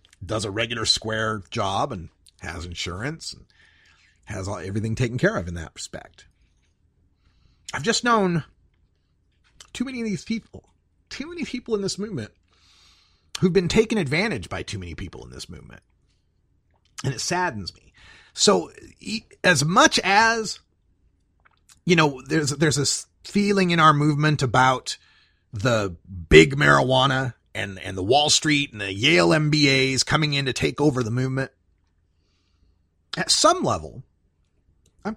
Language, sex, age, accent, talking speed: English, male, 40-59, American, 140 wpm